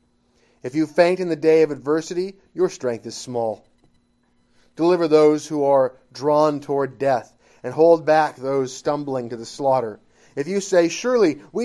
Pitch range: 125-165 Hz